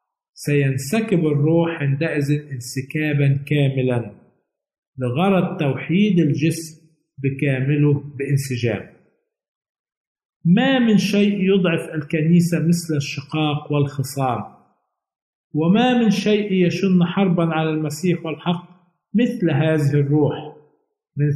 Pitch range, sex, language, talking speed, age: 140-180 Hz, male, Arabic, 85 wpm, 50-69